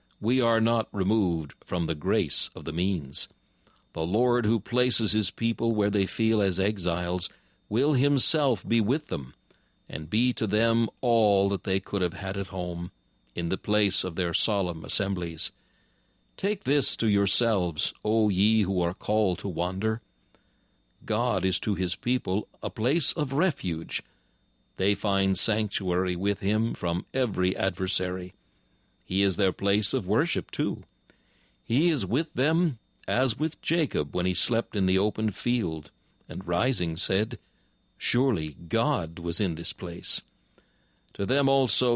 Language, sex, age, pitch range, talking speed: English, male, 60-79, 90-115 Hz, 150 wpm